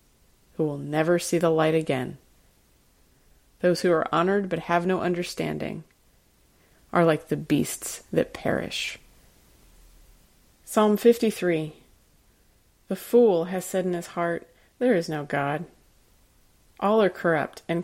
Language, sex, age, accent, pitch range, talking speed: English, female, 30-49, American, 155-185 Hz, 130 wpm